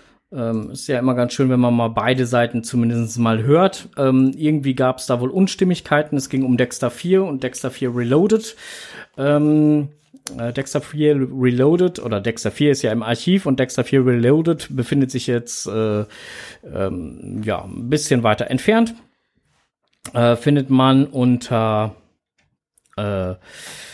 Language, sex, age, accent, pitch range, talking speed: German, male, 50-69, German, 120-155 Hz, 155 wpm